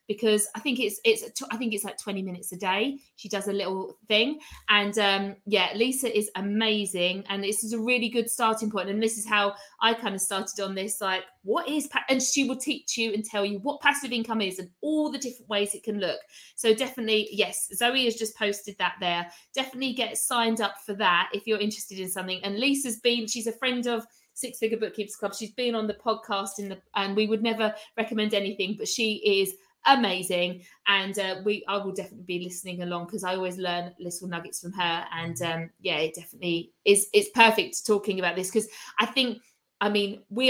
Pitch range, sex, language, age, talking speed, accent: 195-235 Hz, female, English, 50-69, 220 wpm, British